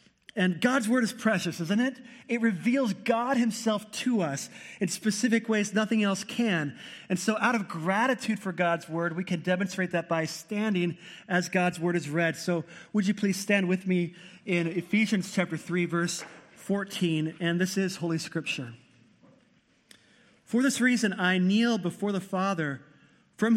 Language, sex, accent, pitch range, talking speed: English, male, American, 170-215 Hz, 165 wpm